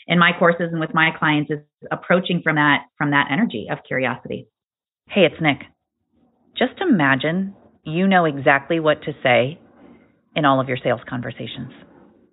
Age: 40-59